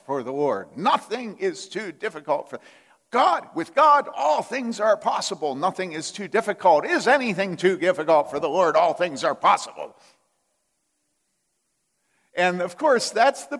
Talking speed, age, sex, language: 155 wpm, 50-69, male, English